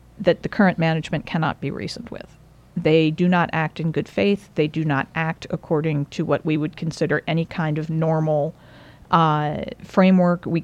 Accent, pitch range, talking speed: American, 155-185 Hz, 180 wpm